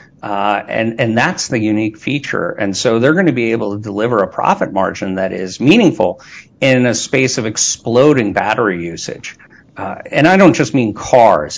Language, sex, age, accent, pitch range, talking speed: English, male, 50-69, American, 105-135 Hz, 185 wpm